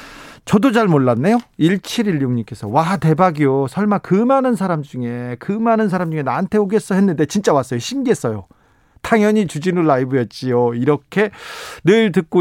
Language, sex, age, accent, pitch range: Korean, male, 40-59, native, 130-195 Hz